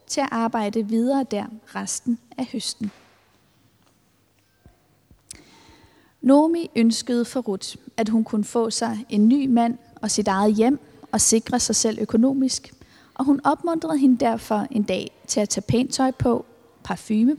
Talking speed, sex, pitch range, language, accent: 150 wpm, female, 205-255 Hz, Danish, native